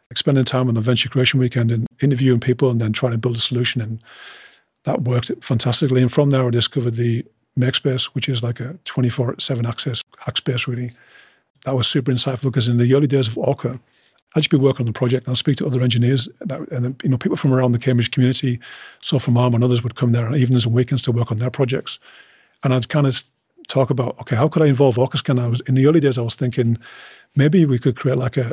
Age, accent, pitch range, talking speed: 40-59, British, 120-135 Hz, 245 wpm